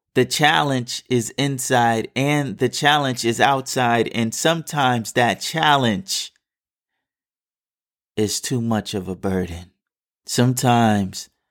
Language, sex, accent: English, male, American